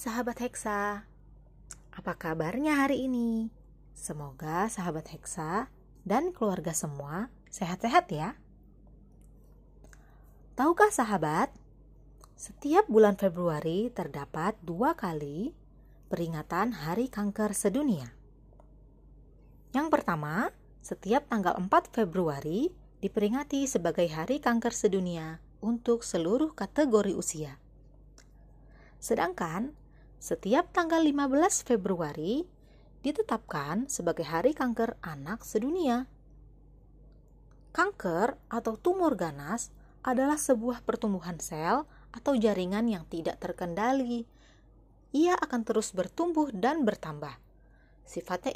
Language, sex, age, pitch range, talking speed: Indonesian, female, 20-39, 170-255 Hz, 90 wpm